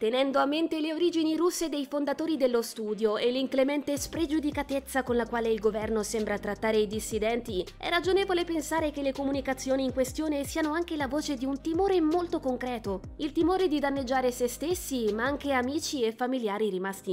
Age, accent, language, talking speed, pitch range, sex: 20-39, native, Italian, 180 wpm, 220-310 Hz, female